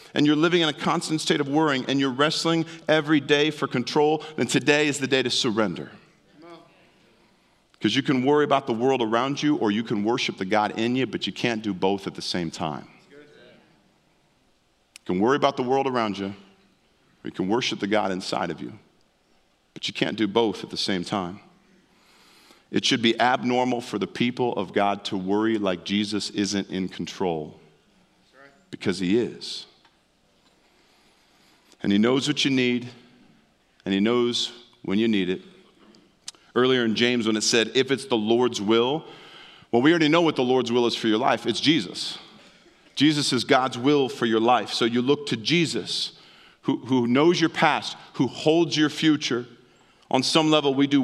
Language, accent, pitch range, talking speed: English, American, 110-145 Hz, 185 wpm